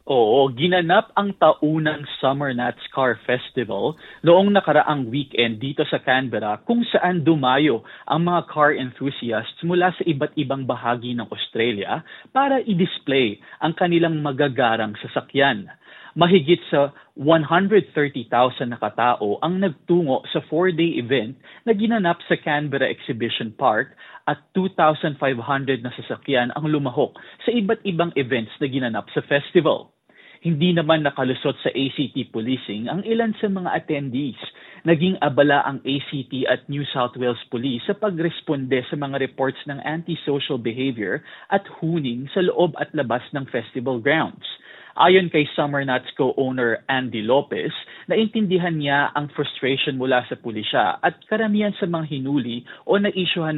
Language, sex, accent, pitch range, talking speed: Filipino, male, native, 130-170 Hz, 135 wpm